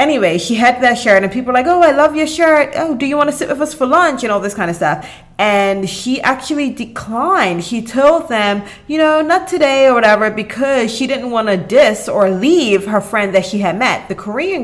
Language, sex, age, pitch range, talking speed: English, female, 30-49, 190-265 Hz, 240 wpm